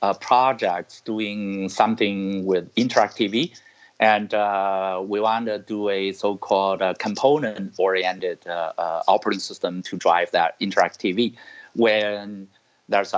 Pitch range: 95-110 Hz